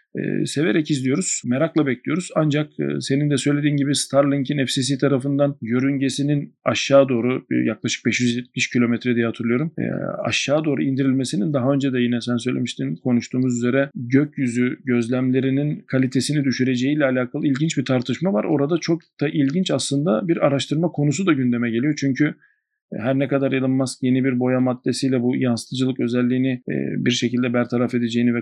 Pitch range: 125-145 Hz